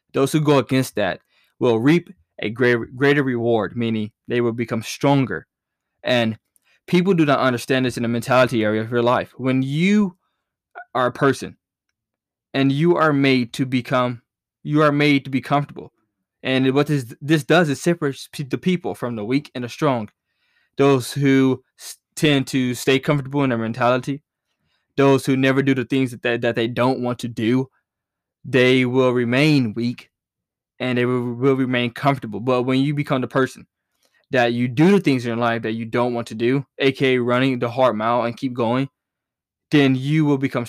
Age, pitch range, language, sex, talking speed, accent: 20-39, 120-140 Hz, English, male, 185 wpm, American